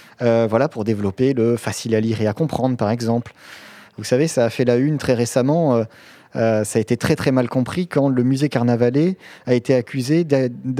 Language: French